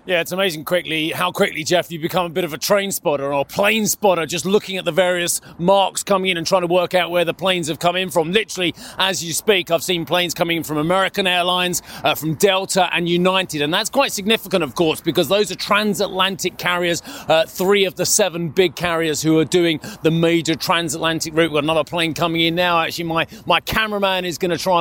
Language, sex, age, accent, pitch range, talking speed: English, male, 30-49, British, 165-190 Hz, 230 wpm